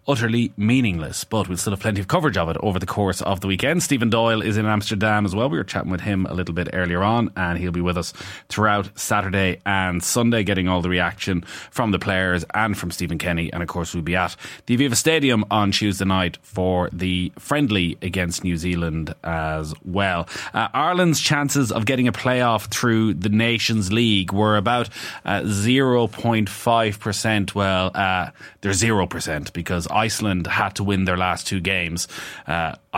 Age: 30-49